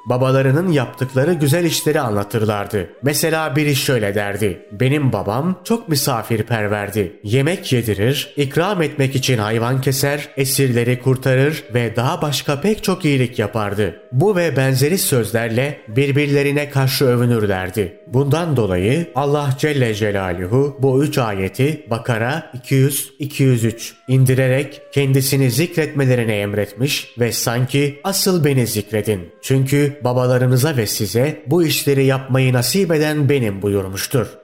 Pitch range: 115-145 Hz